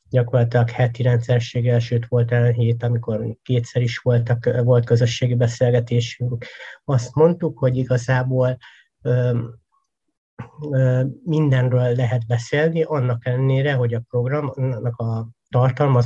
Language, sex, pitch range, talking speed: Hungarian, male, 120-130 Hz, 110 wpm